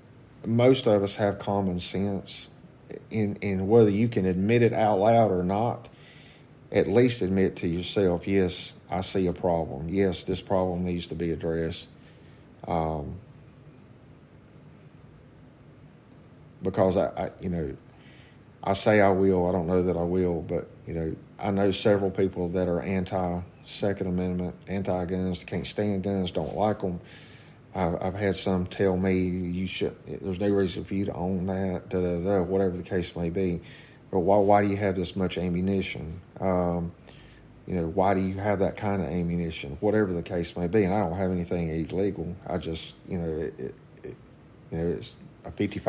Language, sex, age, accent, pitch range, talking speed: English, male, 50-69, American, 90-100 Hz, 180 wpm